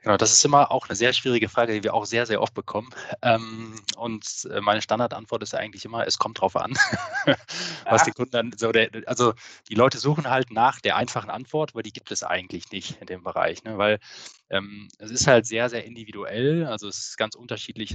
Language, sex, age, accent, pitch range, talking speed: German, male, 20-39, German, 95-115 Hz, 195 wpm